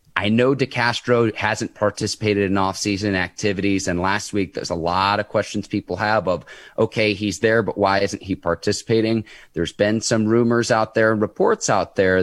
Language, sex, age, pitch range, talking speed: English, male, 30-49, 95-115 Hz, 180 wpm